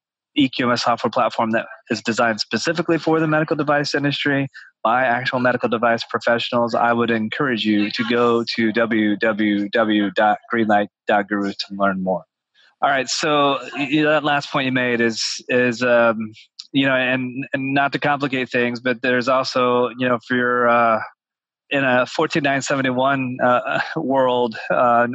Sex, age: male, 20-39